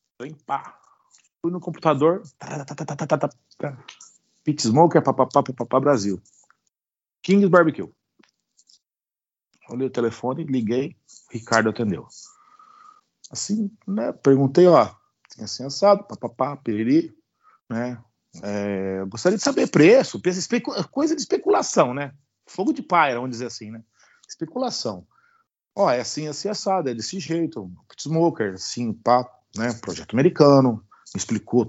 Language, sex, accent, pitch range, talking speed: Portuguese, male, Brazilian, 115-190 Hz, 130 wpm